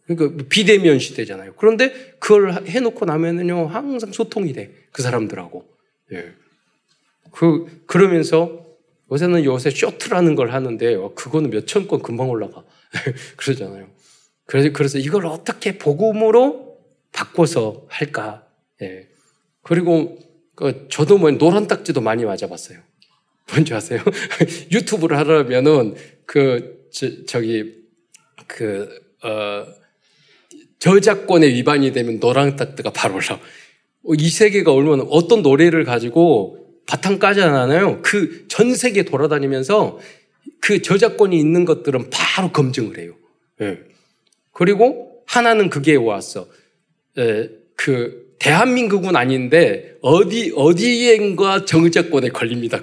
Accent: native